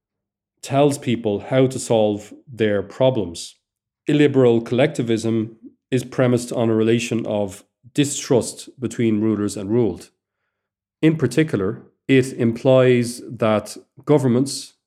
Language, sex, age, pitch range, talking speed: English, male, 40-59, 100-130 Hz, 105 wpm